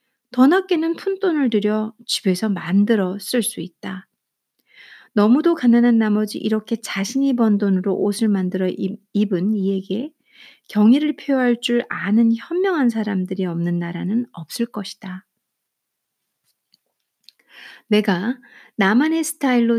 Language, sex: Korean, female